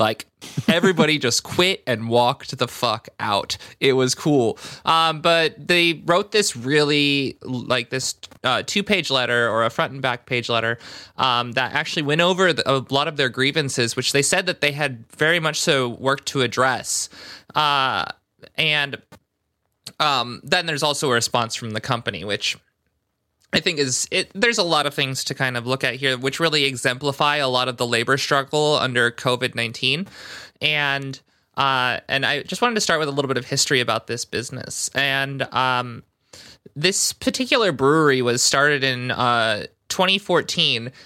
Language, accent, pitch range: English, American, 130-165 Hz